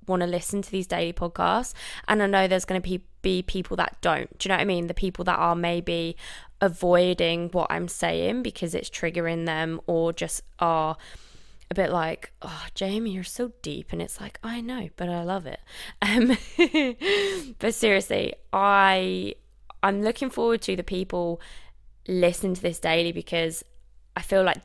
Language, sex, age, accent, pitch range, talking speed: English, female, 20-39, British, 170-195 Hz, 180 wpm